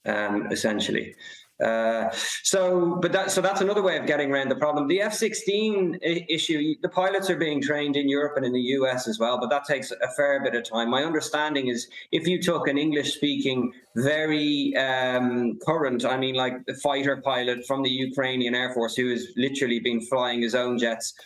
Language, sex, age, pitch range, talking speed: English, male, 20-39, 115-140 Hz, 200 wpm